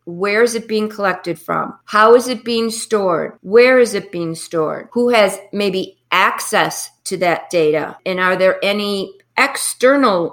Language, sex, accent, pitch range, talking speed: English, female, American, 180-220 Hz, 165 wpm